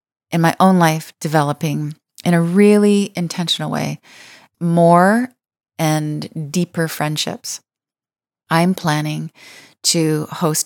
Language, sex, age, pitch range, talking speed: English, female, 30-49, 155-175 Hz, 100 wpm